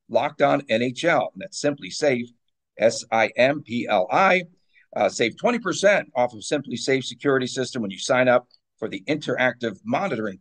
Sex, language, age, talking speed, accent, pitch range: male, English, 50-69, 165 wpm, American, 125-165 Hz